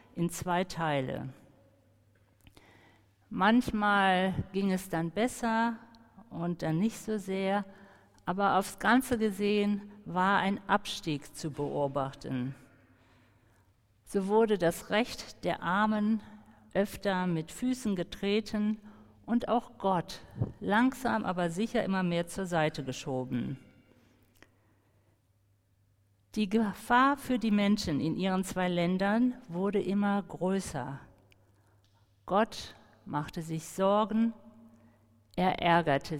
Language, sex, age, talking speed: German, female, 50-69, 100 wpm